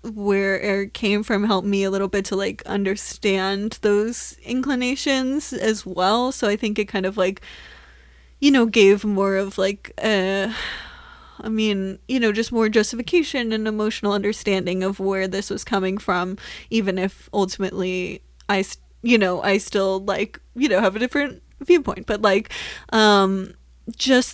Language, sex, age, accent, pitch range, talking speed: English, female, 20-39, American, 190-220 Hz, 160 wpm